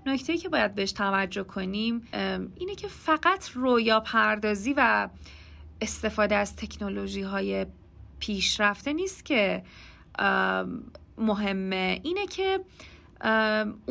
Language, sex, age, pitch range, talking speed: Persian, female, 30-49, 195-260 Hz, 90 wpm